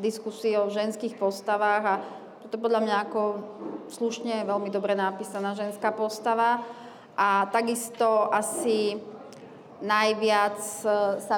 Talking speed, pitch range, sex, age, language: 105 wpm, 210-240 Hz, female, 30-49, Slovak